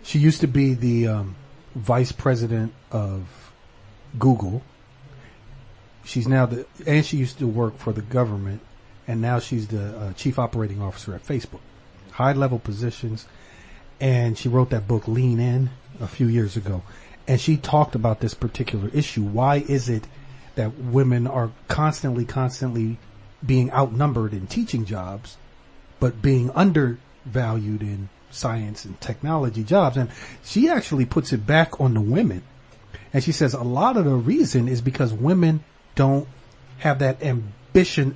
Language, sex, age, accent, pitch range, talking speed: English, male, 40-59, American, 110-145 Hz, 155 wpm